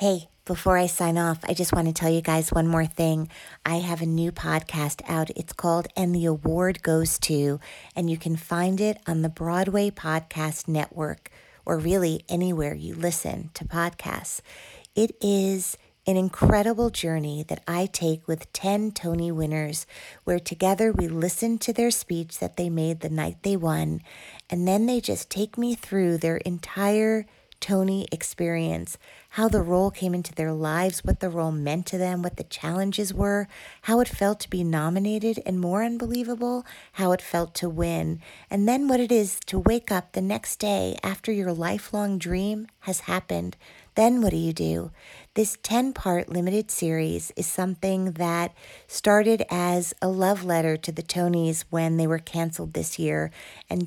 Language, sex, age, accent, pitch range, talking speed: English, female, 40-59, American, 165-200 Hz, 175 wpm